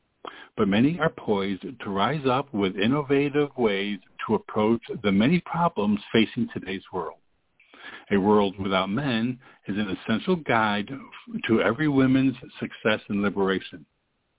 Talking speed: 135 wpm